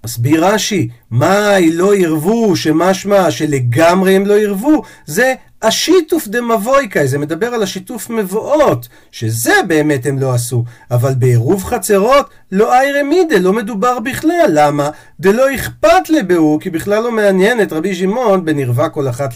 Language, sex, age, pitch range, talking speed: Hebrew, male, 50-69, 150-230 Hz, 150 wpm